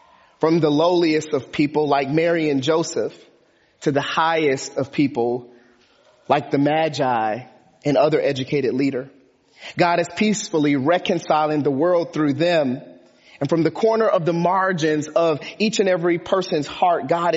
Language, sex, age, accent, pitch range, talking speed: English, male, 30-49, American, 140-170 Hz, 150 wpm